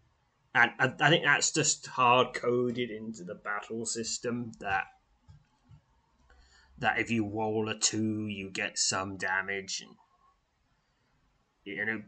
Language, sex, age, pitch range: English, male, 20-39, 105-140 Hz